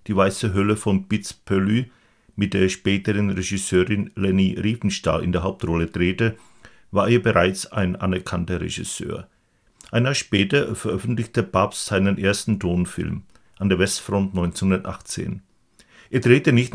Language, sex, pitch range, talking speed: Czech, male, 95-110 Hz, 130 wpm